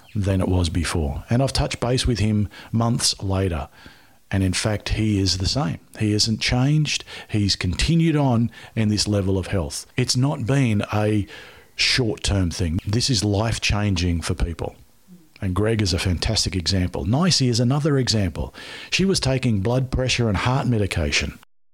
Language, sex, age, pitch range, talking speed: English, male, 50-69, 100-130 Hz, 170 wpm